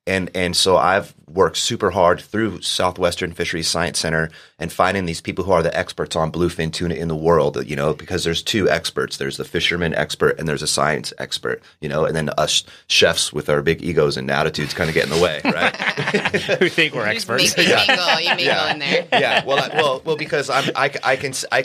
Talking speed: 215 wpm